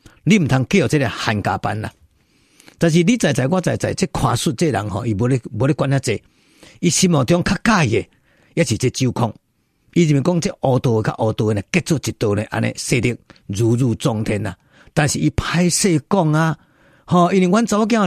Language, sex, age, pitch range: Chinese, male, 50-69, 130-210 Hz